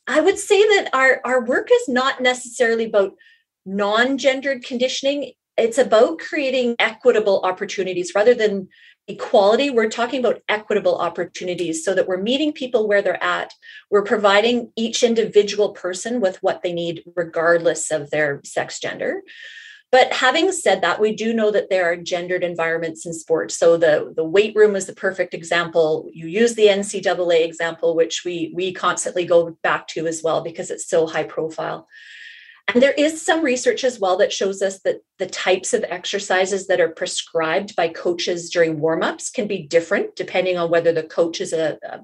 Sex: female